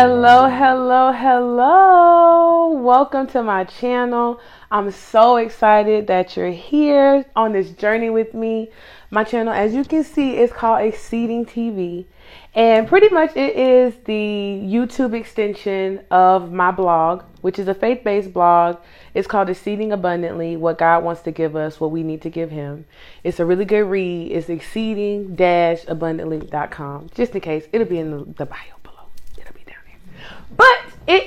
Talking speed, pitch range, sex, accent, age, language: 150 wpm, 170-240 Hz, female, American, 20-39, English